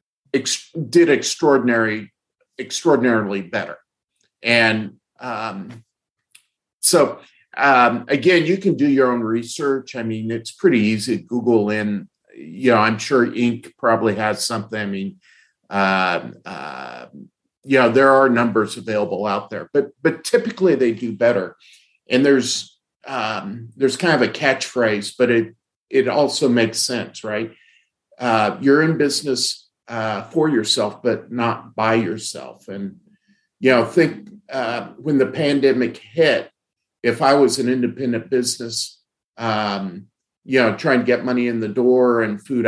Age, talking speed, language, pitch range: 50-69, 140 wpm, English, 110-135 Hz